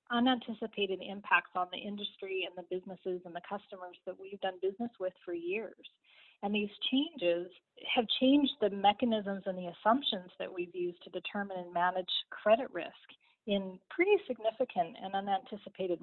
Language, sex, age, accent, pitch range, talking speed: English, female, 30-49, American, 190-230 Hz, 155 wpm